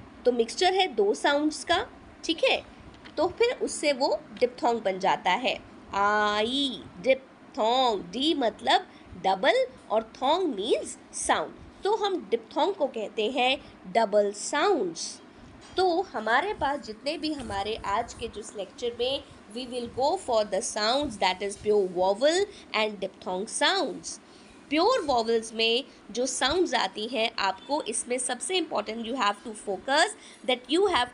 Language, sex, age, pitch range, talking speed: English, female, 20-39, 220-300 Hz, 150 wpm